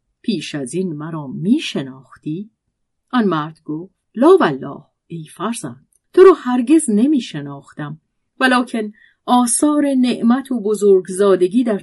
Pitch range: 155-250 Hz